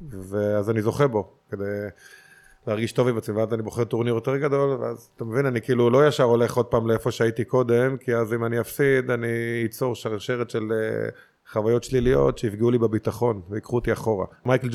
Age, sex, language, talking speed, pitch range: 20-39, male, Hebrew, 165 wpm, 110-125 Hz